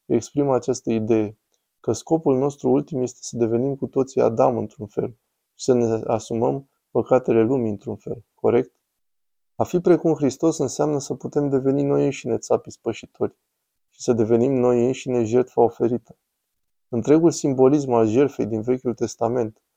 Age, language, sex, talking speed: 20-39, Romanian, male, 150 wpm